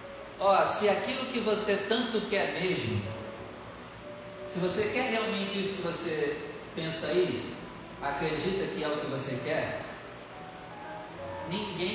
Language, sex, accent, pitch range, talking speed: Portuguese, male, Brazilian, 150-200 Hz, 125 wpm